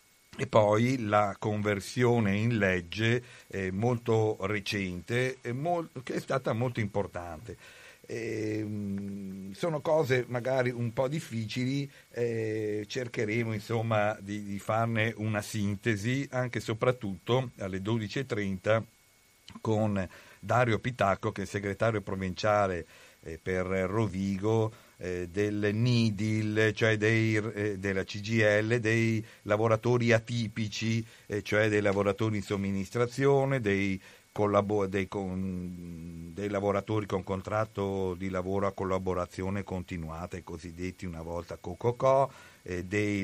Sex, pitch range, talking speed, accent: male, 95-115 Hz, 105 wpm, native